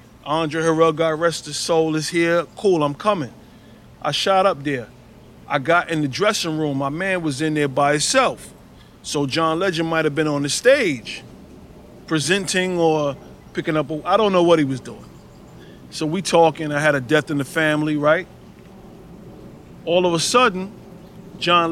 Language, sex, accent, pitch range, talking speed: English, male, American, 150-185 Hz, 175 wpm